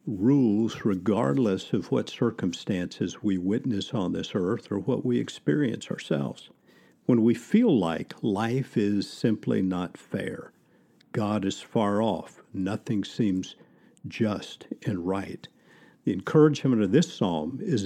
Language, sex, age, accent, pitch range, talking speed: English, male, 50-69, American, 100-135 Hz, 130 wpm